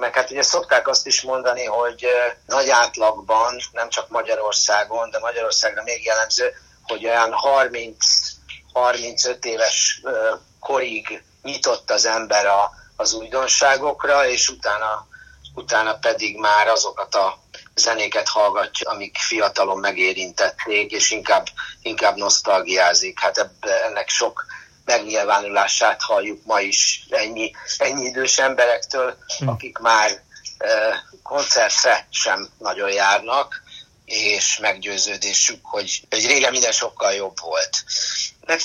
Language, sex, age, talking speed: Hungarian, male, 50-69, 115 wpm